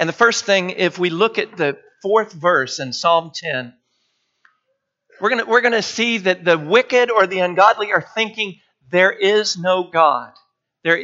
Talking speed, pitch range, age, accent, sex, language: 180 wpm, 150-205 Hz, 50-69, American, male, English